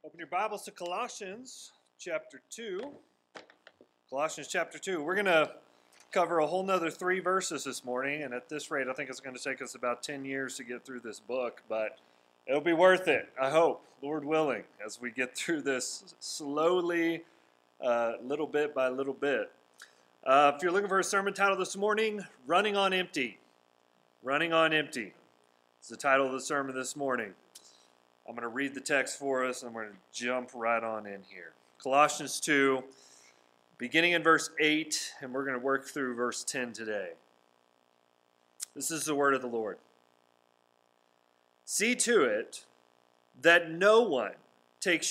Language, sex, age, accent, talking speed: English, male, 30-49, American, 175 wpm